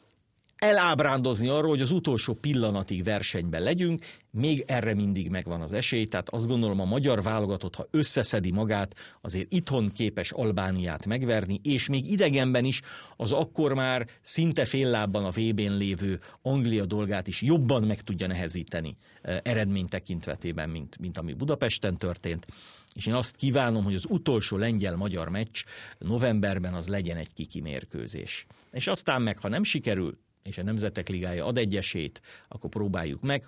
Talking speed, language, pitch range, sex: 150 wpm, Hungarian, 95-125 Hz, male